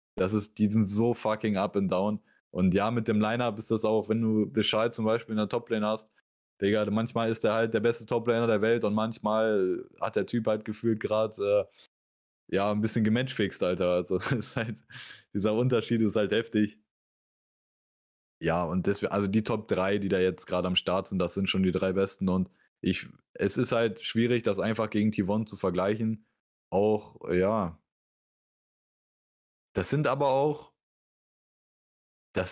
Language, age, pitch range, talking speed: German, 20-39, 100-120 Hz, 175 wpm